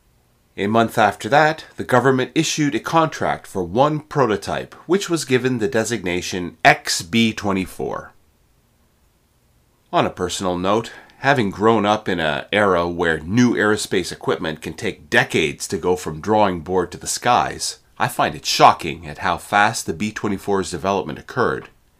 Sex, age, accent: male, 40-59, American